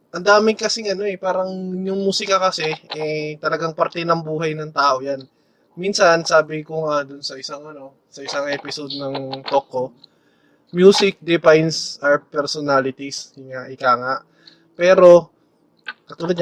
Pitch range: 140-170 Hz